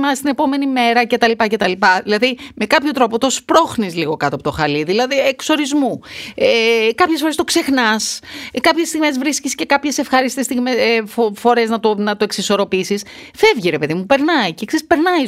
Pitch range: 175-275 Hz